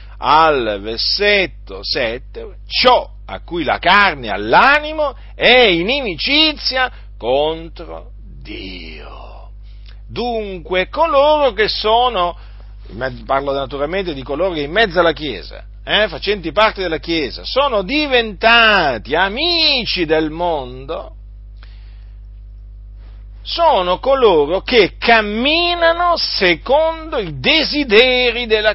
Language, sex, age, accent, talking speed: Italian, male, 50-69, native, 95 wpm